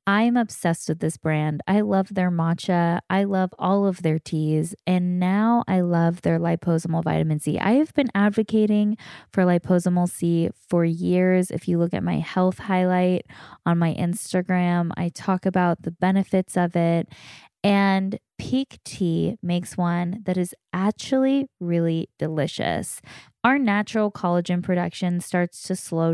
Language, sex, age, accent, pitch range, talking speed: English, female, 20-39, American, 175-210 Hz, 150 wpm